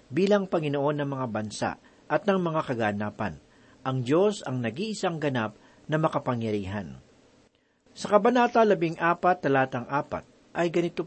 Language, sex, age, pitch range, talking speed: Filipino, male, 50-69, 125-175 Hz, 125 wpm